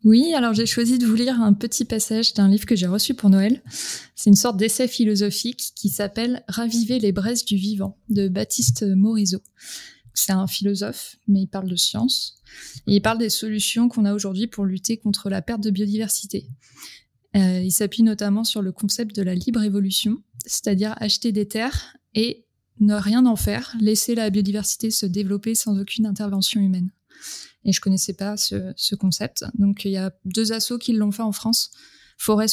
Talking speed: 190 wpm